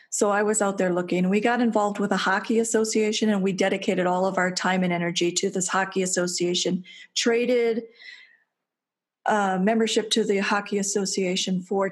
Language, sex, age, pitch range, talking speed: English, female, 40-59, 190-265 Hz, 170 wpm